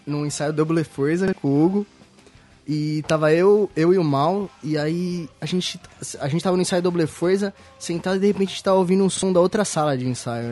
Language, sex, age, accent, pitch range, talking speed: Portuguese, male, 20-39, Brazilian, 130-170 Hz, 230 wpm